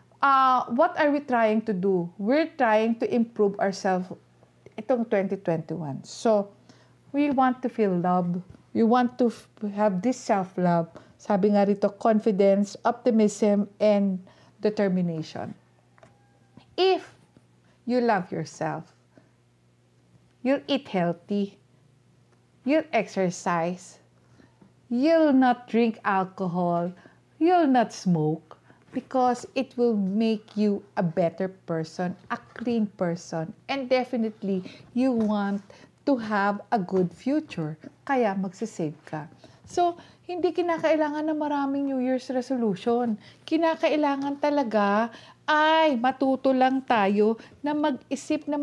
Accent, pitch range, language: Filipino, 195-265 Hz, English